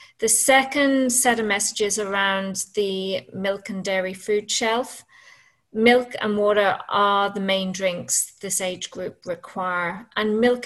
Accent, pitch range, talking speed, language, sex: British, 185-220 Hz, 140 wpm, English, female